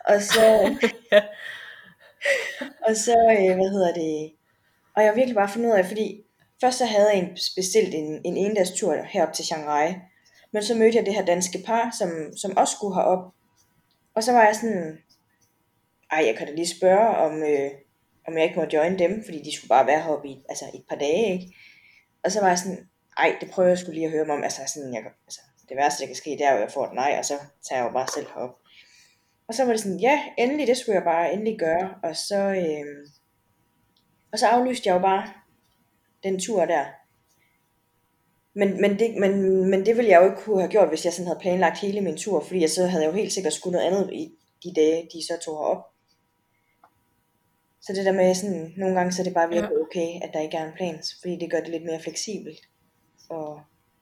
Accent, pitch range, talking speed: native, 160-200 Hz, 225 wpm